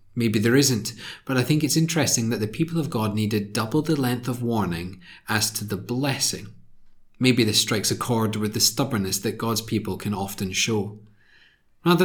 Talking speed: 190 wpm